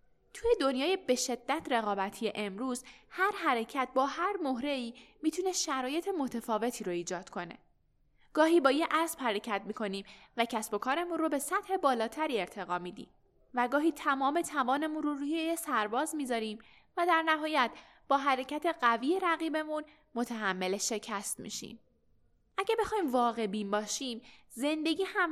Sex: female